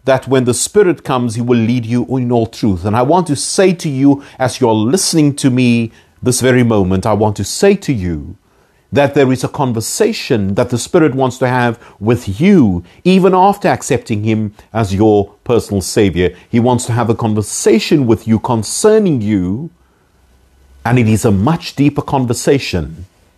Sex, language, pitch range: male, English, 105-145 Hz